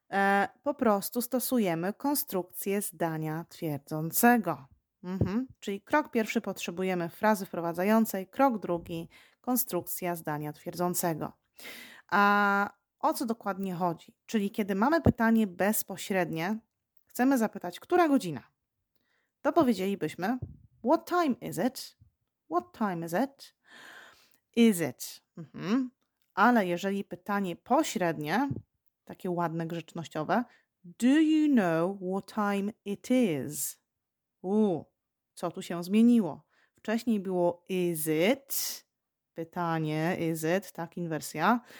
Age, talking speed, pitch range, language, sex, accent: 30-49, 100 wpm, 170-235 Hz, Polish, female, native